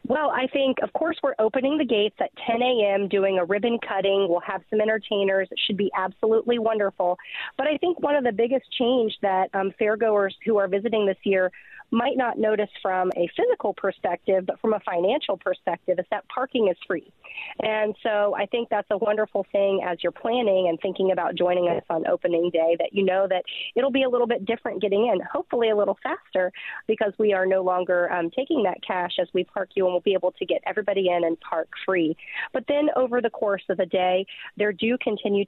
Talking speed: 215 wpm